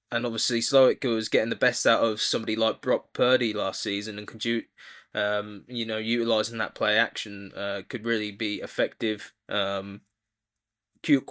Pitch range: 110-130 Hz